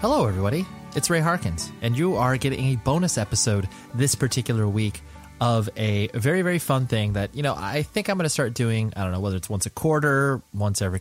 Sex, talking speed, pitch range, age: male, 225 wpm, 105-135 Hz, 20-39